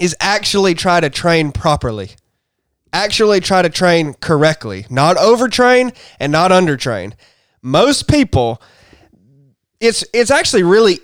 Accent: American